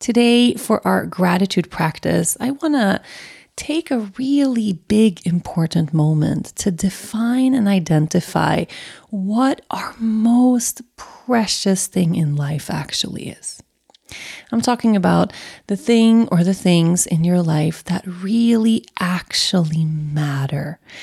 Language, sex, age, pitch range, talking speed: English, female, 30-49, 165-220 Hz, 120 wpm